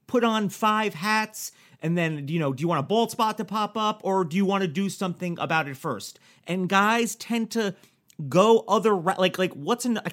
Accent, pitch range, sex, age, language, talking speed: American, 175-215 Hz, male, 40-59, English, 225 wpm